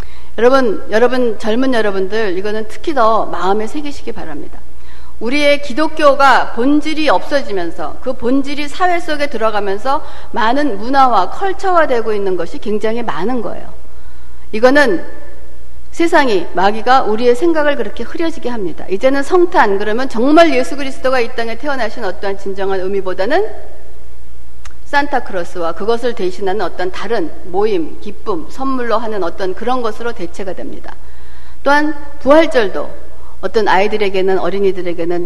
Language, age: Korean, 60-79